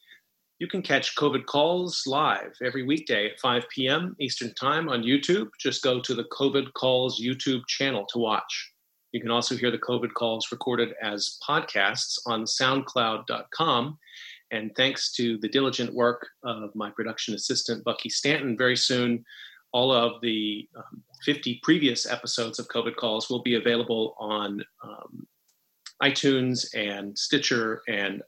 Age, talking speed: 30-49, 150 wpm